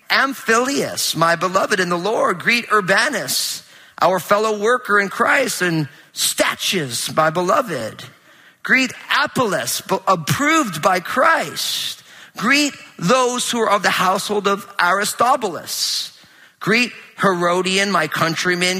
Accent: American